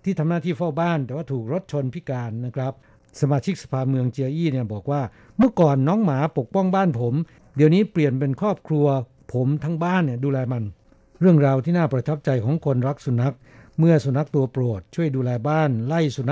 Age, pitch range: 60-79, 125-155 Hz